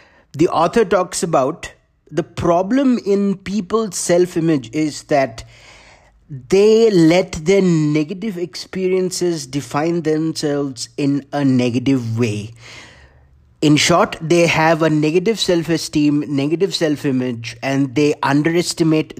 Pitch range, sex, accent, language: 125-180 Hz, male, Indian, English